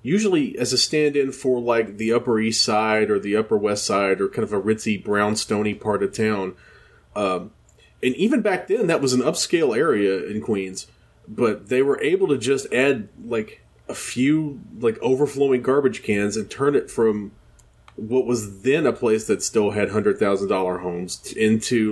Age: 30-49